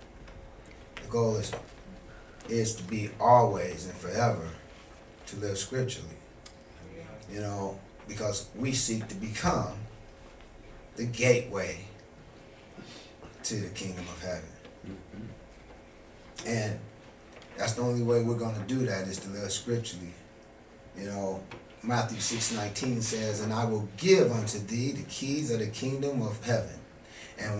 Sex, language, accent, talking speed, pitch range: male, English, American, 130 wpm, 100-120 Hz